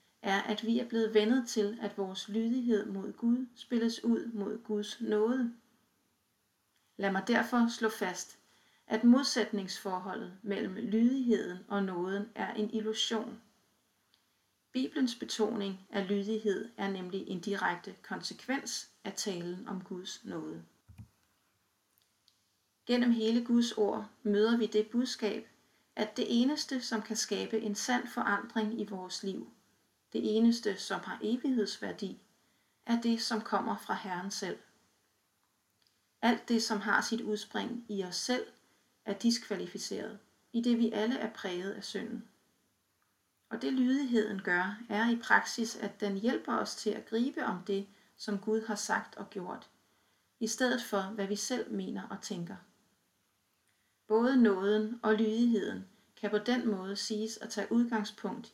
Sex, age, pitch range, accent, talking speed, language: female, 30-49, 195-230 Hz, native, 140 wpm, Danish